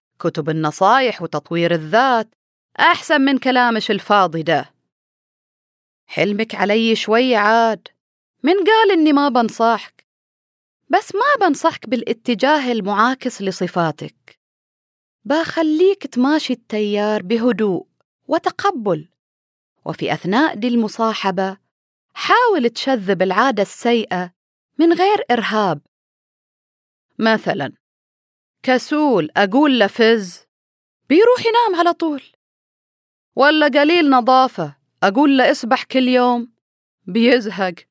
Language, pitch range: Arabic, 195-275 Hz